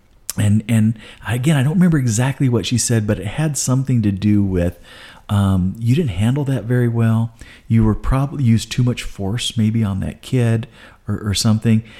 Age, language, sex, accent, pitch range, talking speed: 40-59, English, male, American, 100-125 Hz, 190 wpm